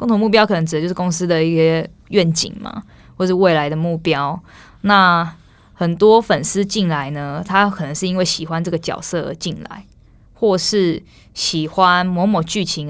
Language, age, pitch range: Chinese, 20-39, 165-205 Hz